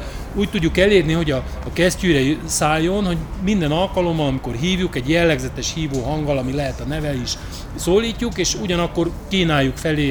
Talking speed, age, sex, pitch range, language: 160 wpm, 30-49, male, 125-170 Hz, Hungarian